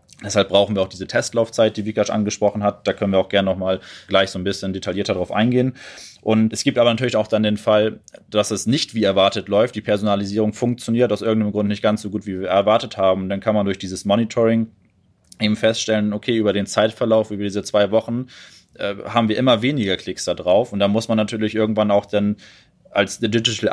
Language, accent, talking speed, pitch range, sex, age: German, German, 215 wpm, 100-110 Hz, male, 20-39